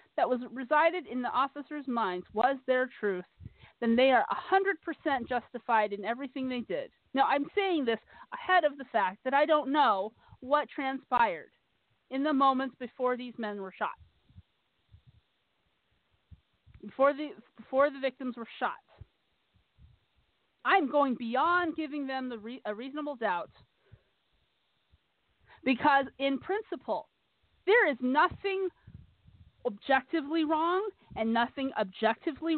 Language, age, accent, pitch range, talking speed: English, 40-59, American, 245-315 Hz, 130 wpm